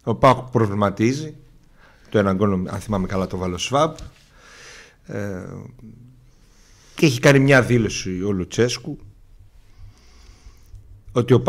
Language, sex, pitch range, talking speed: Greek, male, 100-135 Hz, 95 wpm